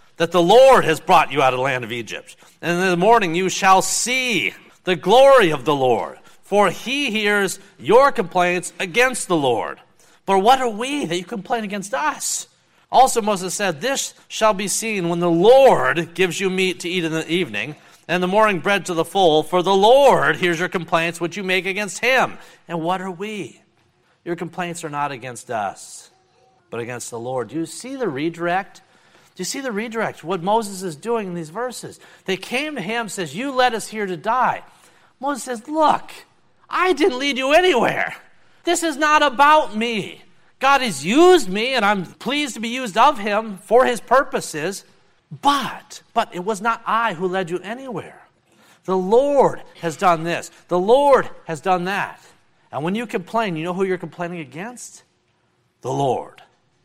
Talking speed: 190 wpm